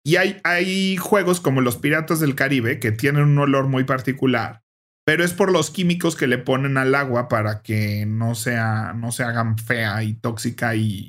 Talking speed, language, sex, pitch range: 195 wpm, Spanish, male, 115-145 Hz